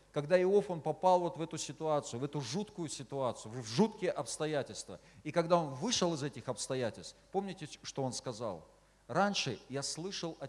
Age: 40-59